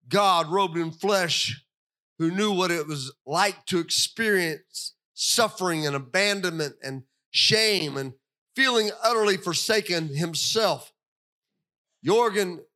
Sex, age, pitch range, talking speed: male, 40-59, 160-230 Hz, 110 wpm